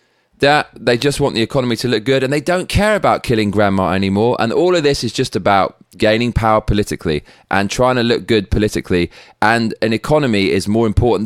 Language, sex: English, male